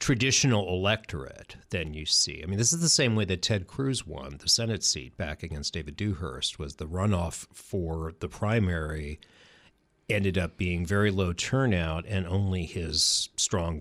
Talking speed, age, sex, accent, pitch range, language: 170 wpm, 40-59, male, American, 85-115 Hz, English